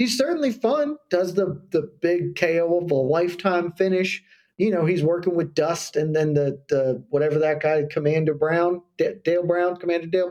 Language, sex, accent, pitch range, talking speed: English, male, American, 150-215 Hz, 185 wpm